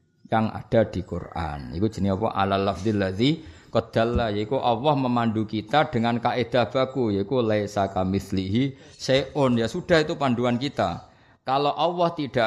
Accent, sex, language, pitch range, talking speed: native, male, Indonesian, 95-125 Hz, 100 wpm